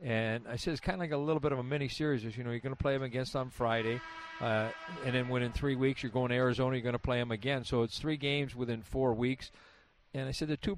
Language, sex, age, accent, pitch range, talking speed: English, male, 50-69, American, 120-140 Hz, 285 wpm